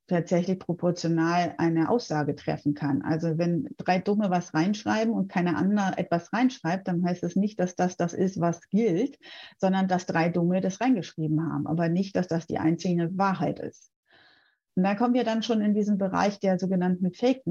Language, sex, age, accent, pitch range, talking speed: German, female, 30-49, German, 185-230 Hz, 190 wpm